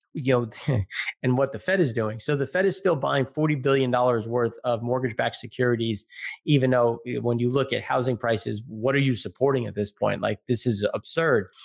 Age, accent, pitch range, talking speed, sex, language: 30-49, American, 120-140 Hz, 205 wpm, male, English